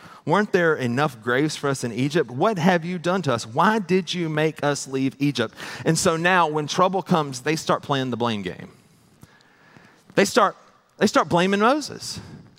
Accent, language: American, English